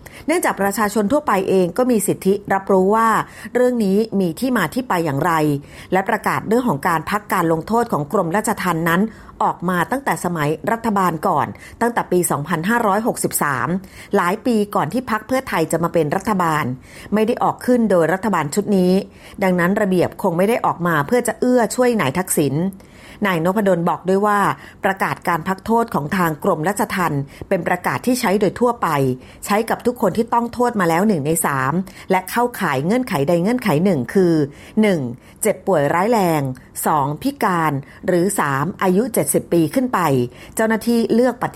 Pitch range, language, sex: 165-220 Hz, Thai, female